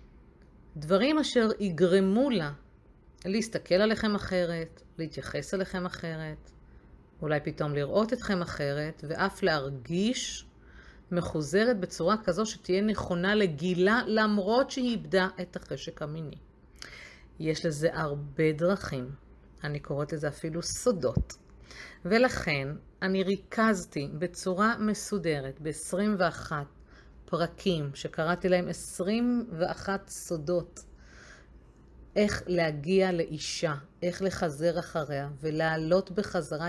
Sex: female